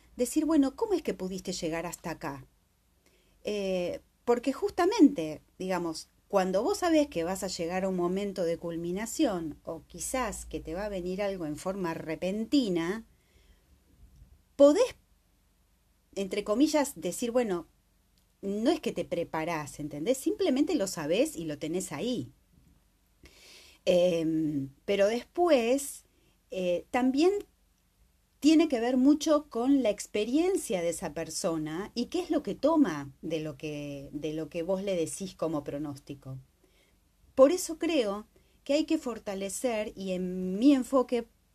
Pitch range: 165-270 Hz